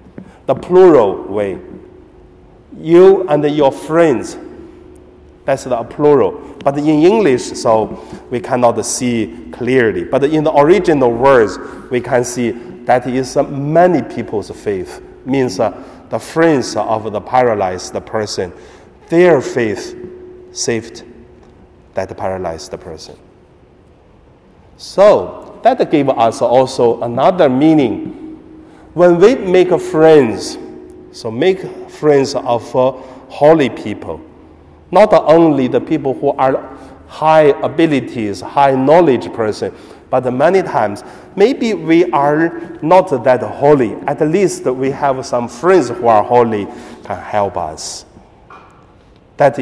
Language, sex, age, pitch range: Chinese, male, 50-69, 130-190 Hz